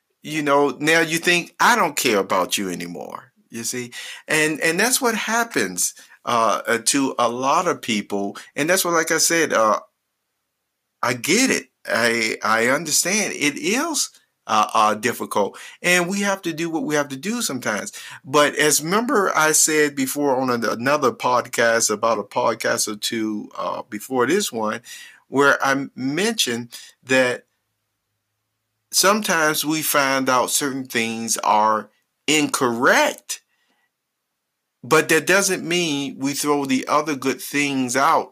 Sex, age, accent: male, 50-69, American